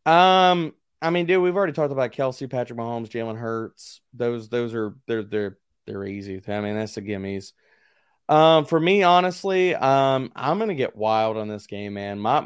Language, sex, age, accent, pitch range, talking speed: English, male, 20-39, American, 115-150 Hz, 195 wpm